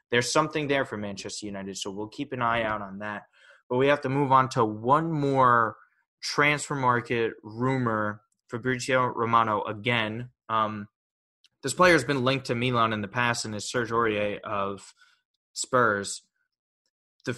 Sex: male